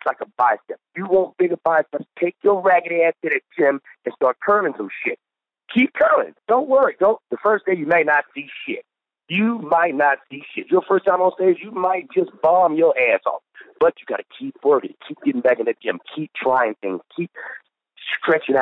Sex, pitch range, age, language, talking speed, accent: male, 150-230 Hz, 50-69, English, 215 wpm, American